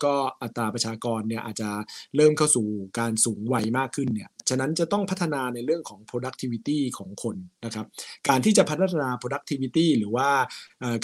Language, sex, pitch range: Thai, male, 115-140 Hz